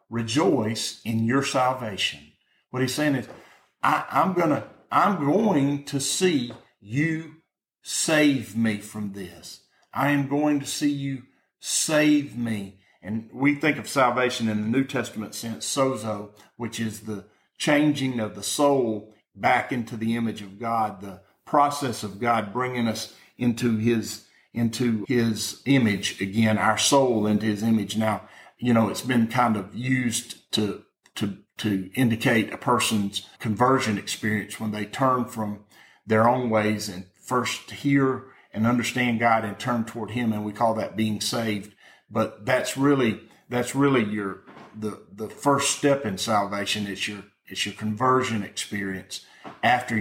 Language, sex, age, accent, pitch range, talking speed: English, male, 50-69, American, 105-125 Hz, 150 wpm